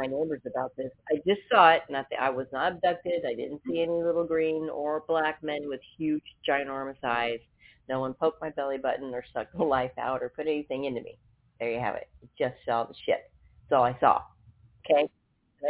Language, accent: English, American